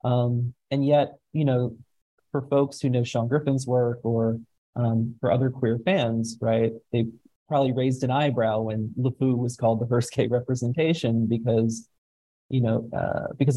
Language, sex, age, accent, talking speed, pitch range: English, male, 30-49, American, 165 wpm, 115-125 Hz